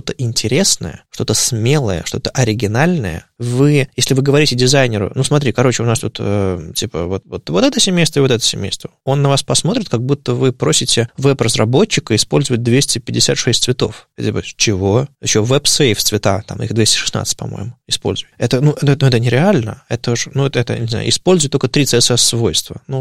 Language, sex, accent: Russian, male, native